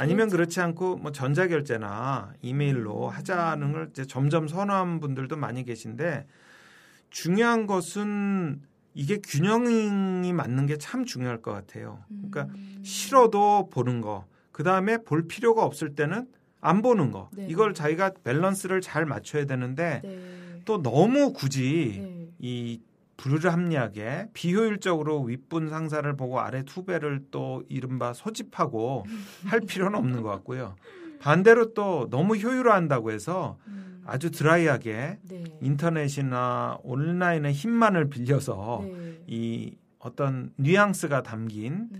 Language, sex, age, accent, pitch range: Korean, male, 40-59, native, 130-190 Hz